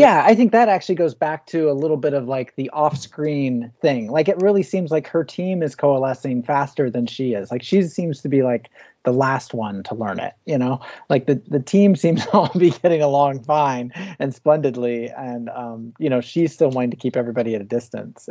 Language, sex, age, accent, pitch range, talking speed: English, male, 30-49, American, 120-155 Hz, 225 wpm